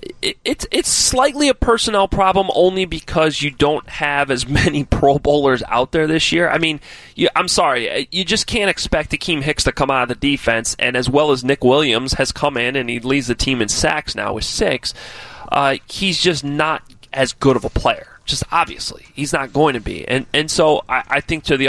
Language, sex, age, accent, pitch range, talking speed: English, male, 30-49, American, 125-165 Hz, 220 wpm